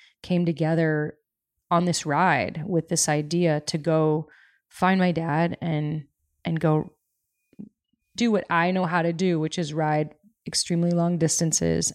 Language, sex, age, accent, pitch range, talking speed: English, female, 20-39, American, 160-180 Hz, 145 wpm